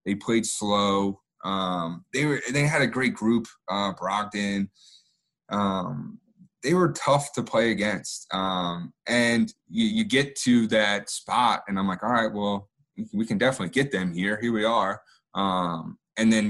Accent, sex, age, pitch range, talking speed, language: American, male, 20-39, 100-125 Hz, 165 wpm, English